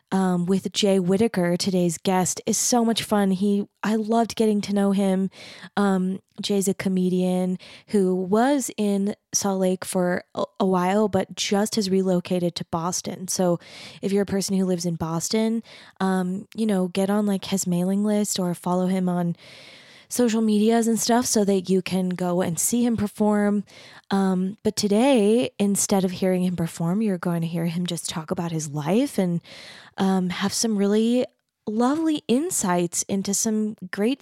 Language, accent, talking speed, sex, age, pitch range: English, American, 170 wpm, female, 20-39, 180-220 Hz